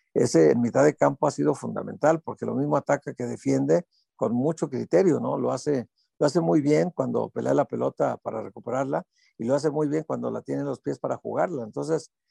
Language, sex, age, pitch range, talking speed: Spanish, male, 50-69, 120-155 Hz, 215 wpm